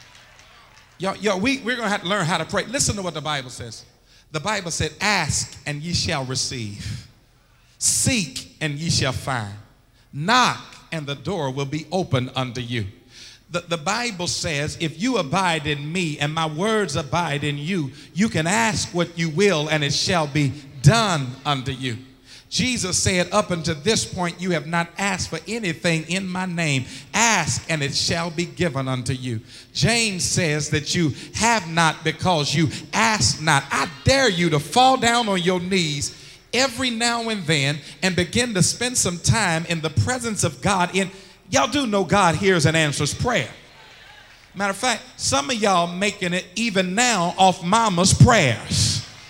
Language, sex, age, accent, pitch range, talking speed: English, male, 50-69, American, 140-195 Hz, 180 wpm